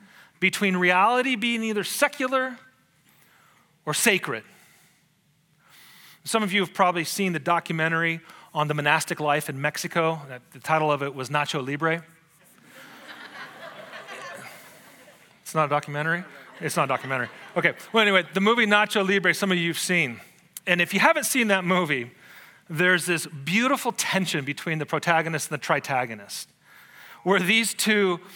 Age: 30-49